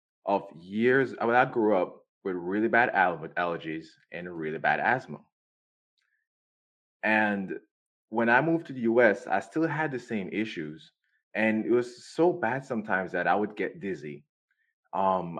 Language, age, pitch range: English, 20-39, 100-145 Hz